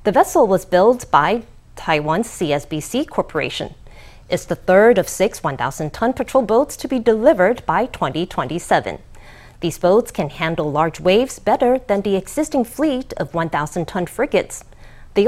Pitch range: 165-240 Hz